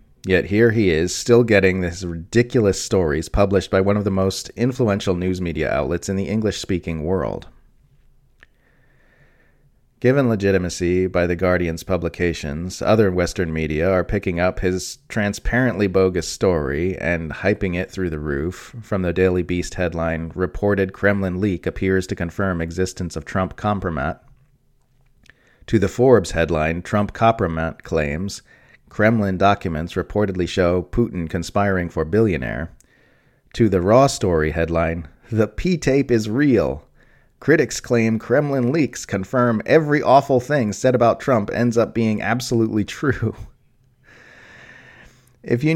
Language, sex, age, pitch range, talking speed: English, male, 30-49, 90-115 Hz, 135 wpm